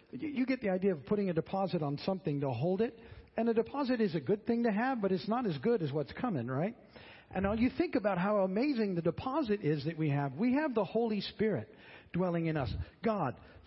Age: 50-69